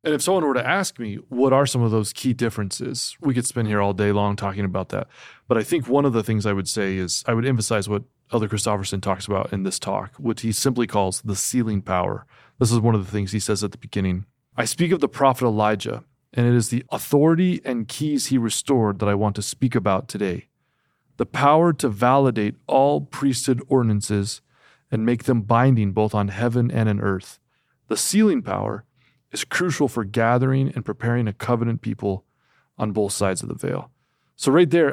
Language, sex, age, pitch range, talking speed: English, male, 30-49, 105-135 Hz, 215 wpm